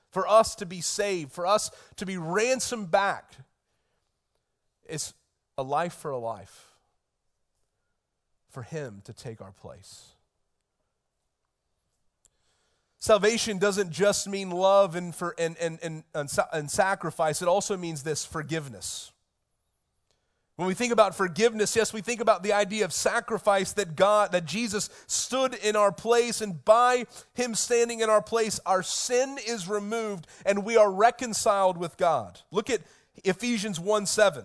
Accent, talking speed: American, 135 wpm